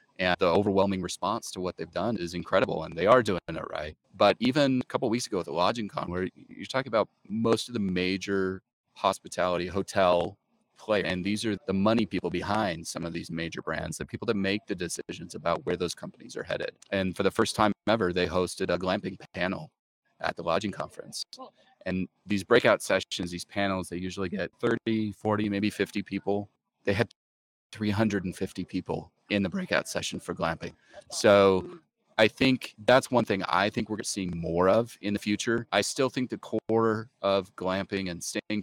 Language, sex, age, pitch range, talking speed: English, male, 30-49, 90-105 Hz, 195 wpm